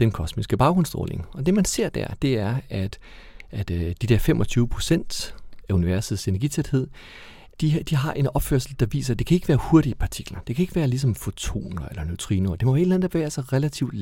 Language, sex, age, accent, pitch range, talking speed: Danish, male, 40-59, native, 100-145 Hz, 205 wpm